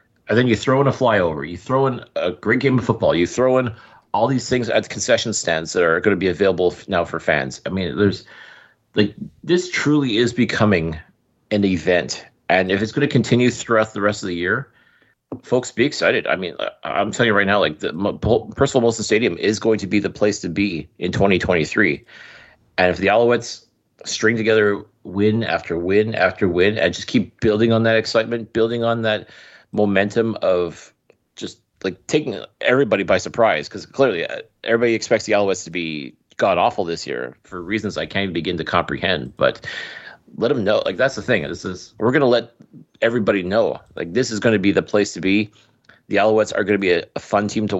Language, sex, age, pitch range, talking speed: English, male, 30-49, 95-120 Hz, 210 wpm